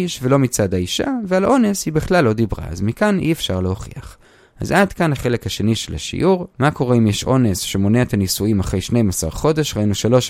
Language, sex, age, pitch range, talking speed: Hebrew, male, 30-49, 95-130 Hz, 200 wpm